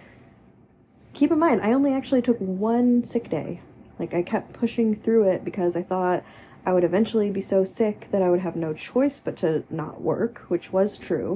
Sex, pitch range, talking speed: female, 170-215 Hz, 200 wpm